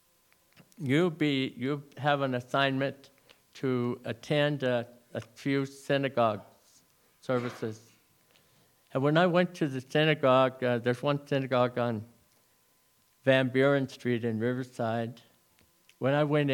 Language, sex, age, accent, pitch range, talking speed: English, male, 50-69, American, 115-145 Hz, 120 wpm